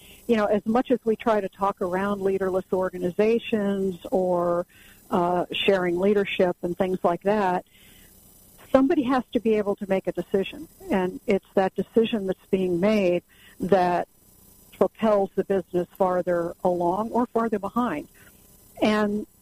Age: 50-69